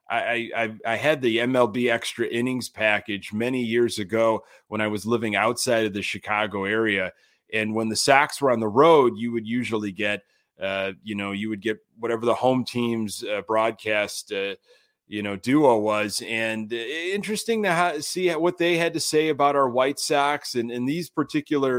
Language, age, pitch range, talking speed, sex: English, 30-49, 105-140 Hz, 185 wpm, male